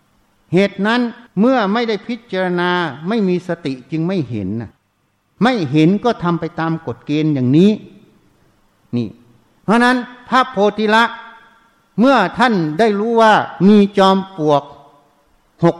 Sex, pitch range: male, 145-200 Hz